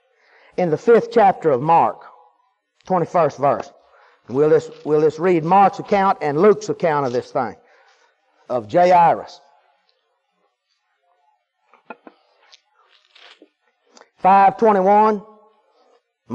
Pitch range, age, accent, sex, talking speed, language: 215-280 Hz, 40-59, American, male, 90 wpm, English